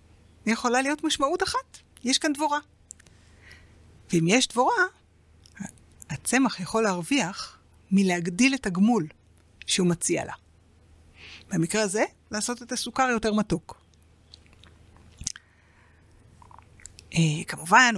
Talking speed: 90 wpm